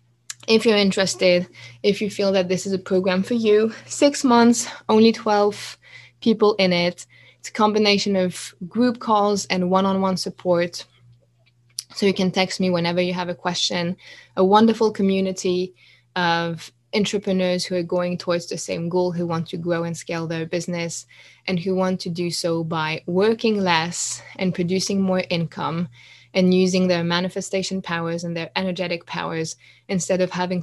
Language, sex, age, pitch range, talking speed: English, female, 20-39, 170-200 Hz, 165 wpm